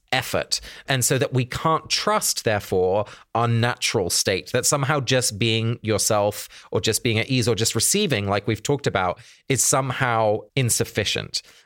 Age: 30-49